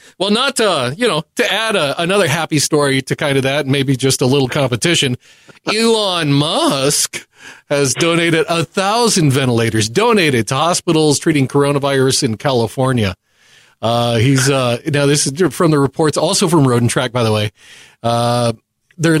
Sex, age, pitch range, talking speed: male, 40-59, 125-160 Hz, 160 wpm